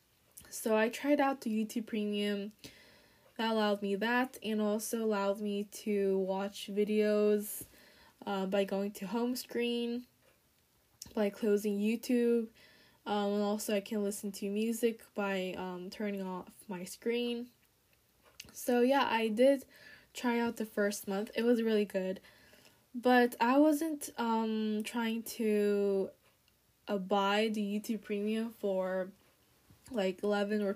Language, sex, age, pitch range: Korean, female, 10-29, 200-235 Hz